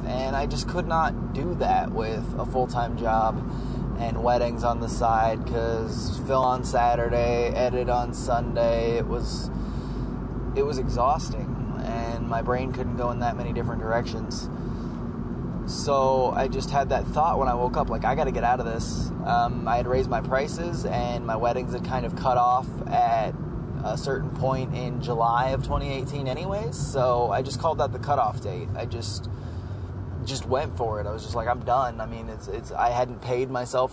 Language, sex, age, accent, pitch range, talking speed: English, male, 20-39, American, 115-140 Hz, 190 wpm